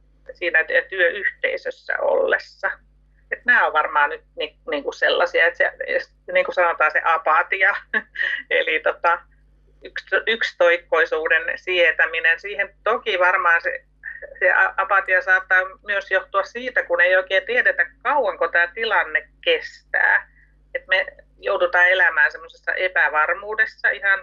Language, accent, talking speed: Finnish, native, 115 wpm